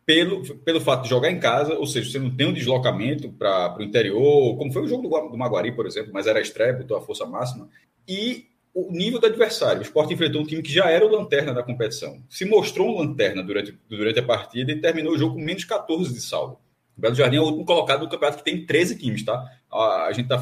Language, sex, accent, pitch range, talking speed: Portuguese, male, Brazilian, 130-190 Hz, 245 wpm